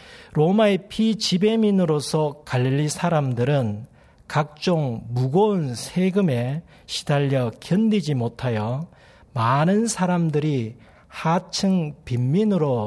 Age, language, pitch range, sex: 40-59, Korean, 125-185 Hz, male